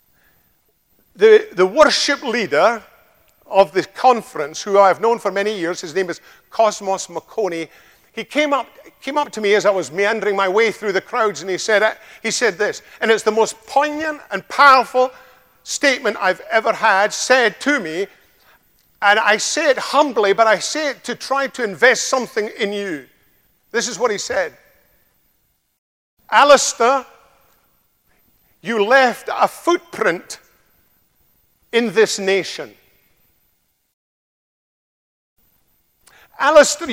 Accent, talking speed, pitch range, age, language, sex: British, 135 wpm, 185-255 Hz, 50-69, English, male